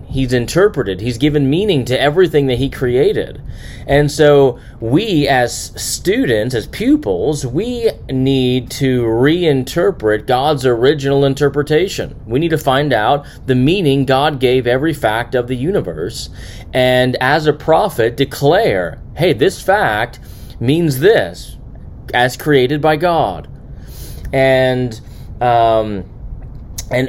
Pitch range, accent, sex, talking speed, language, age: 115-140 Hz, American, male, 120 wpm, English, 30-49